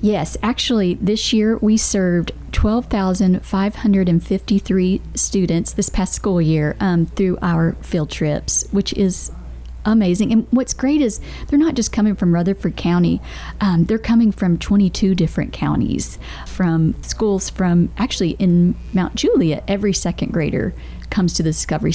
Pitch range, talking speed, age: 175-210 Hz, 140 wpm, 40-59